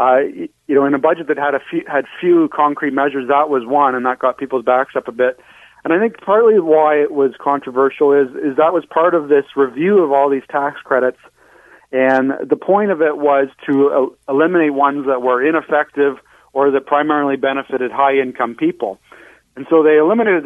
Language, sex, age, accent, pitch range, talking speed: English, male, 40-59, American, 125-150 Hz, 200 wpm